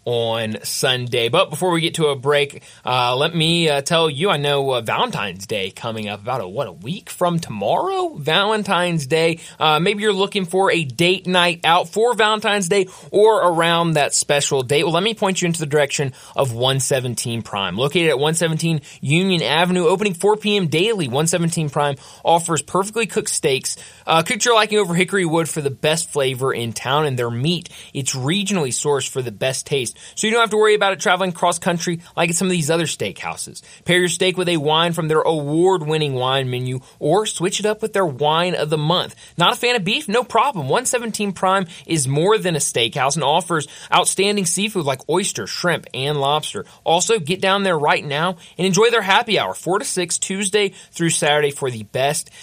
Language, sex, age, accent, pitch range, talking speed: English, male, 20-39, American, 145-190 Hz, 205 wpm